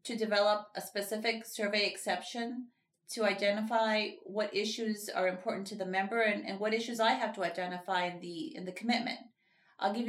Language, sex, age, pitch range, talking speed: English, female, 30-49, 185-220 Hz, 180 wpm